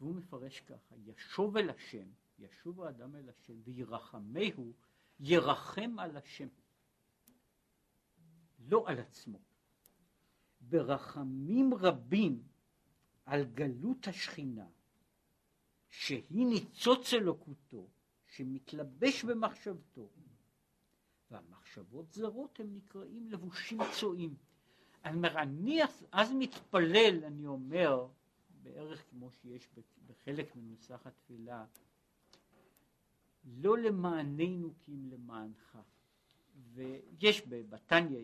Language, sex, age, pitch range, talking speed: Hebrew, male, 60-79, 125-190 Hz, 85 wpm